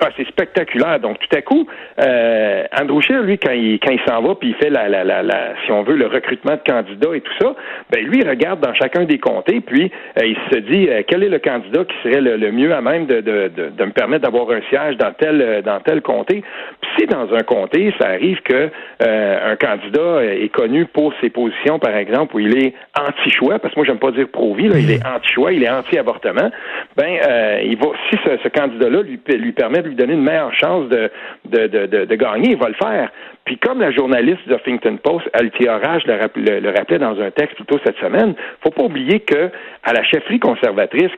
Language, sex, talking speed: French, male, 240 wpm